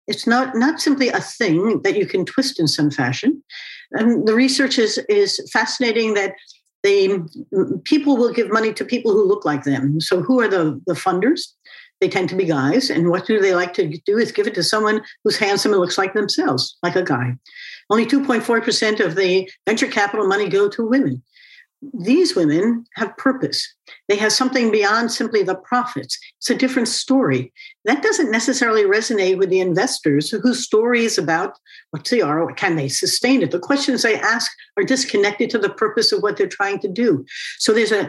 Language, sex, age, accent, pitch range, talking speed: English, female, 60-79, American, 195-265 Hz, 195 wpm